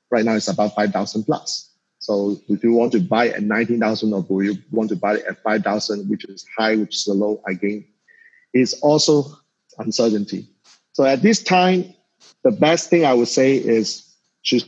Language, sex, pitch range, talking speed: English, male, 110-130 Hz, 190 wpm